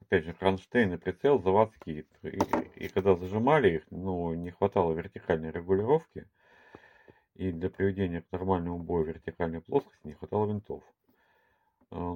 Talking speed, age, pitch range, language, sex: 145 wpm, 40-59, 80-100 Hz, Russian, male